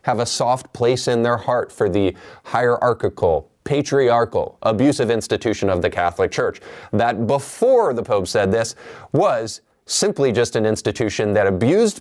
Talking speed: 150 wpm